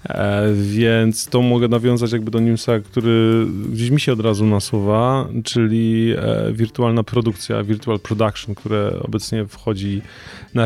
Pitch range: 105-125 Hz